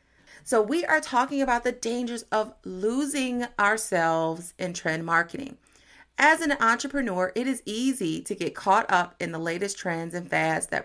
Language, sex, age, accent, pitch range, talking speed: English, female, 30-49, American, 180-230 Hz, 165 wpm